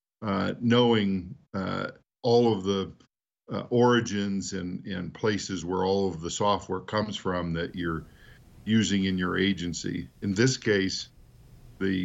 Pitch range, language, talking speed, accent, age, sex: 85-100 Hz, English, 140 wpm, American, 50-69, male